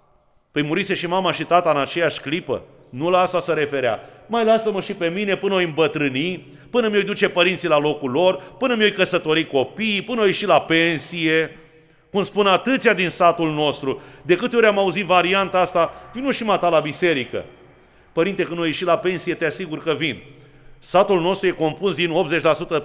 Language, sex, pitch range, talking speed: Romanian, male, 155-195 Hz, 190 wpm